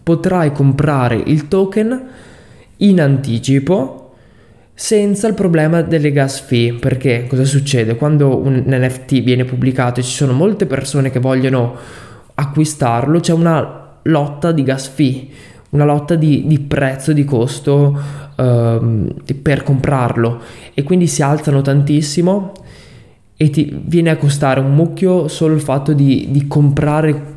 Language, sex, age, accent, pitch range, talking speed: Italian, male, 20-39, native, 130-155 Hz, 135 wpm